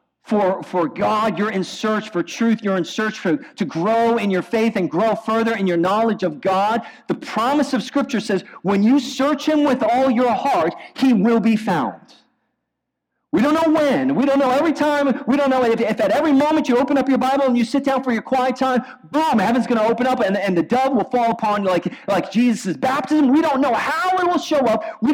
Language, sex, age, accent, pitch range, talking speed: English, male, 40-59, American, 195-270 Hz, 235 wpm